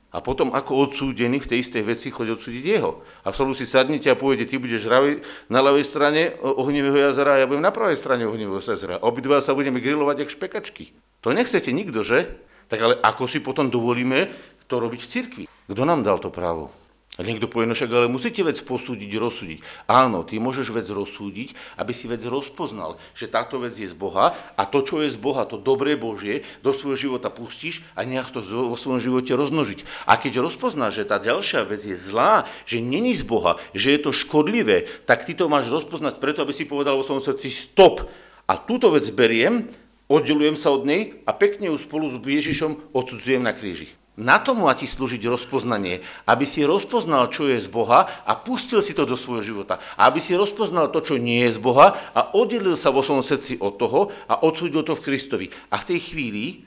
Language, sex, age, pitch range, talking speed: Slovak, male, 50-69, 120-155 Hz, 210 wpm